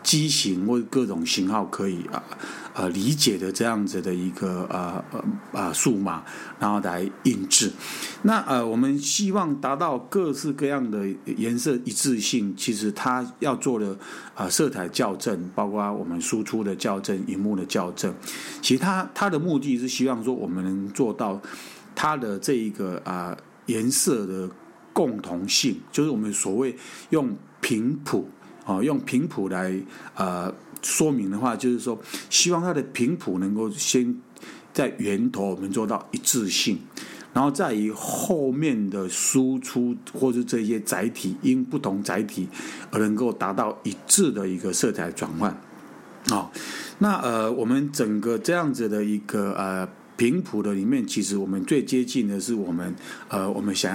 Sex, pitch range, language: male, 100-135 Hz, Chinese